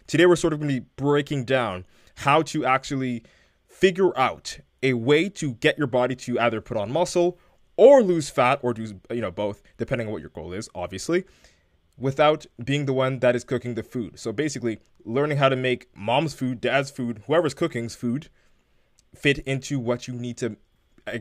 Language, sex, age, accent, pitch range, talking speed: English, male, 20-39, American, 115-145 Hz, 195 wpm